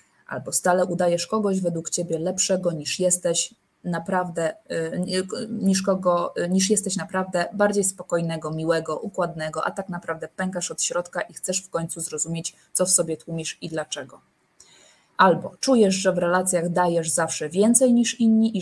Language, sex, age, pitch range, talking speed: Polish, female, 20-39, 165-195 Hz, 140 wpm